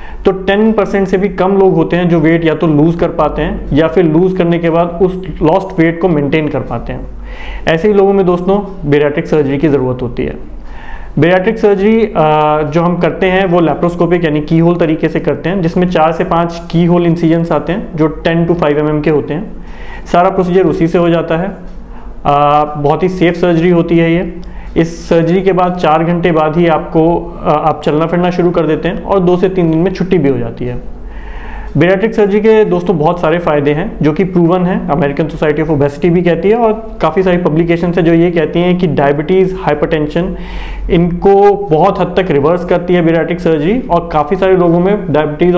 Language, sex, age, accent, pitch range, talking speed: Hindi, male, 30-49, native, 155-180 Hz, 210 wpm